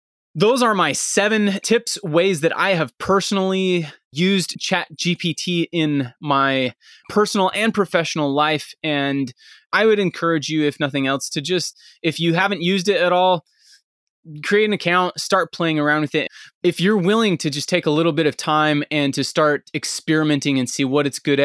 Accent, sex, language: American, male, English